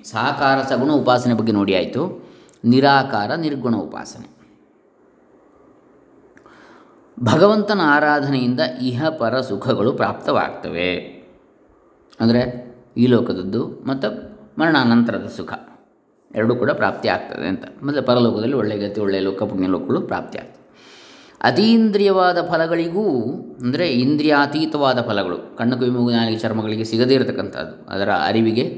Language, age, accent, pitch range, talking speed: Kannada, 20-39, native, 110-140 Hz, 90 wpm